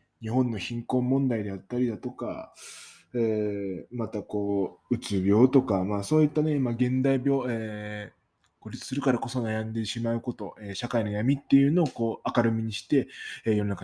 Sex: male